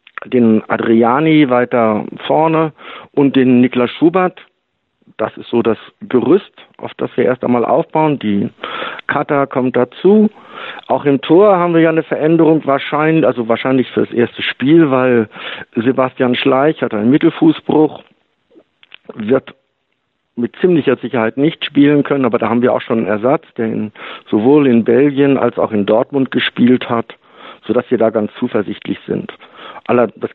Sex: male